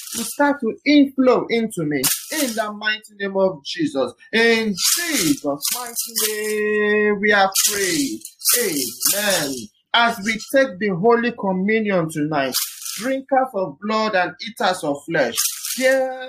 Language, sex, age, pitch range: English, male, 30-49, 190-240 Hz